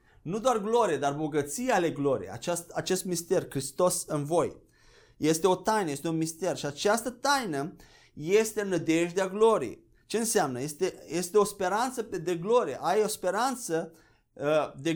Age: 20-39